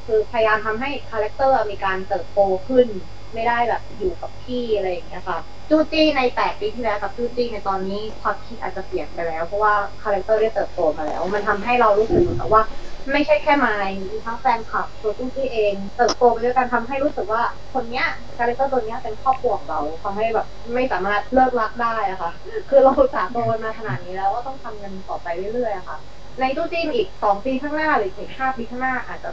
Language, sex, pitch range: Thai, female, 195-245 Hz